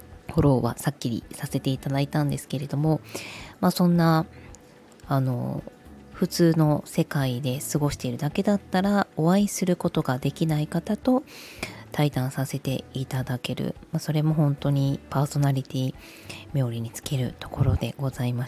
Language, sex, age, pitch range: Japanese, female, 20-39, 135-175 Hz